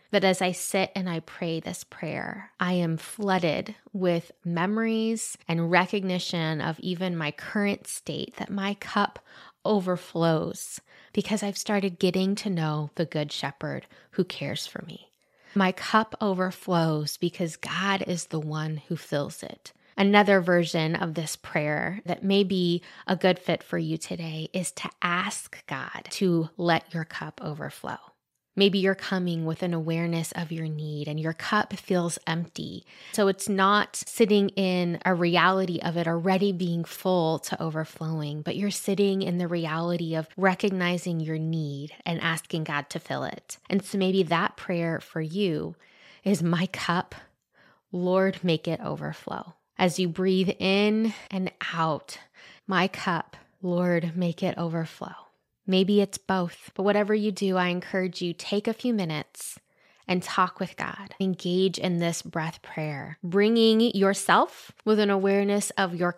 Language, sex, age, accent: English, female, 20-39, American